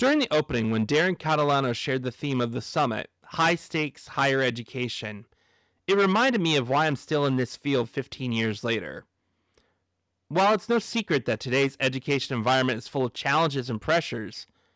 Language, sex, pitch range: English, male, 115-170 Hz